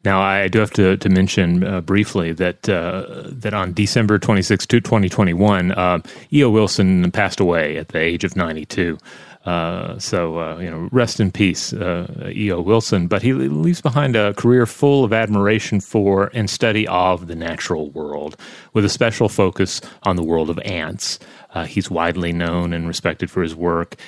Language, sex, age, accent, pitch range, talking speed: English, male, 30-49, American, 85-110 Hz, 180 wpm